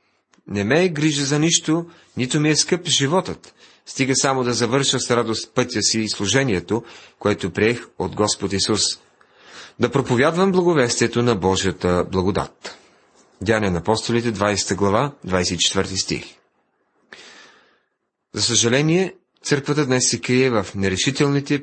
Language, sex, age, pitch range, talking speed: Bulgarian, male, 40-59, 105-140 Hz, 130 wpm